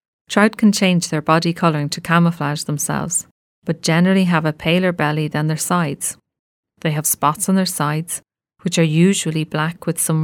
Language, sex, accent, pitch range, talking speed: English, female, Irish, 155-180 Hz, 175 wpm